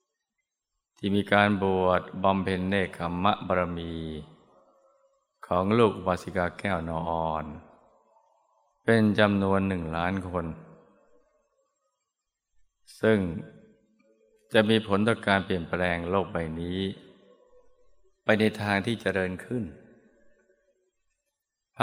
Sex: male